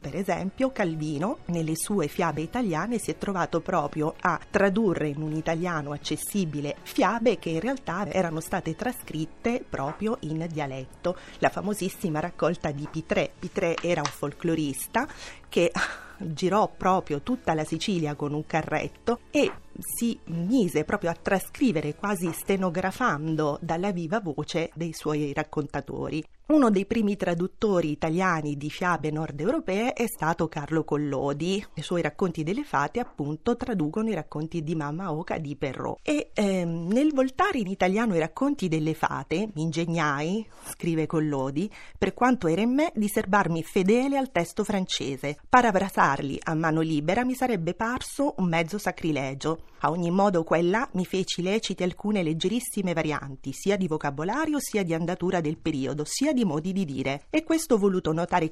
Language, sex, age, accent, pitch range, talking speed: Italian, female, 30-49, native, 155-210 Hz, 155 wpm